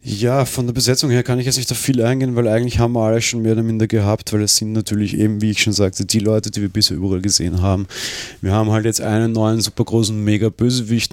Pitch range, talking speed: 90-105 Hz, 260 wpm